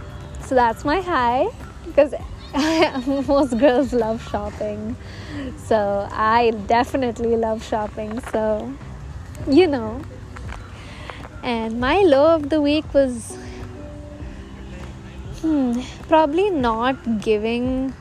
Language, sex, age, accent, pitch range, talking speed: English, female, 20-39, Indian, 220-265 Hz, 95 wpm